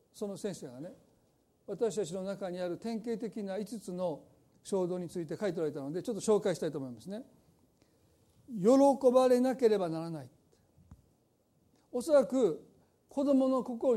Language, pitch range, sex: Japanese, 190-255 Hz, male